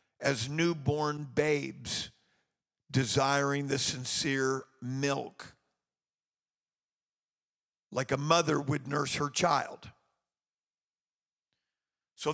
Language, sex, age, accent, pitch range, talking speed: English, male, 50-69, American, 140-165 Hz, 75 wpm